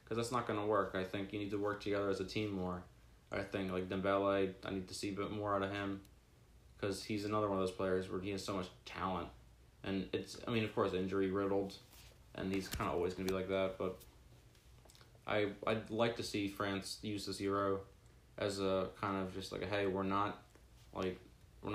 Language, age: English, 20-39